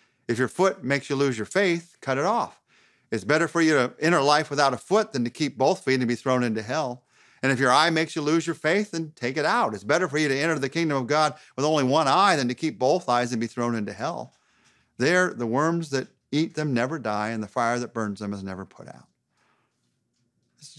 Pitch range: 115-155 Hz